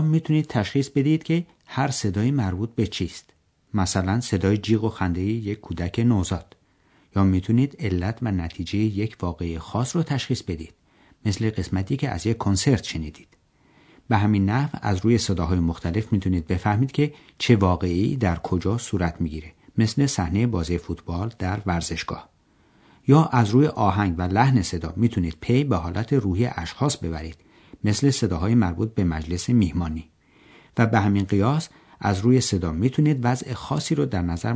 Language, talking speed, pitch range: Persian, 155 wpm, 85-120 Hz